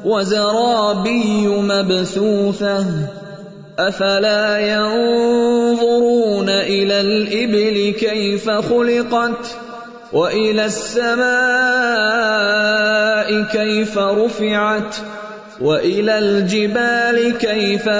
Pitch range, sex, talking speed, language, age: 190-235 Hz, male, 50 wpm, Urdu, 30-49